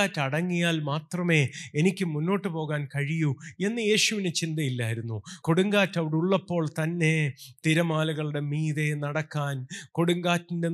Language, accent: Malayalam, native